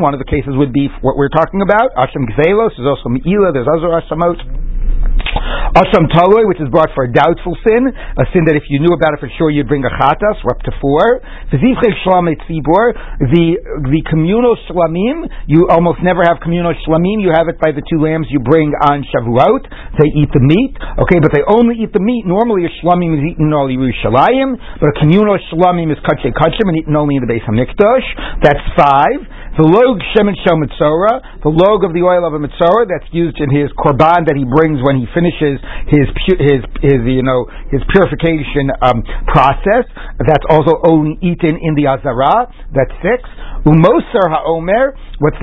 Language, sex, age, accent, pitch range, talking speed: English, male, 60-79, American, 145-180 Hz, 190 wpm